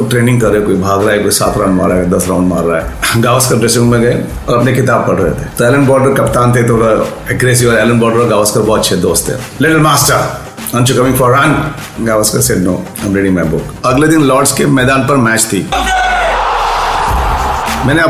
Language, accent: Hindi, native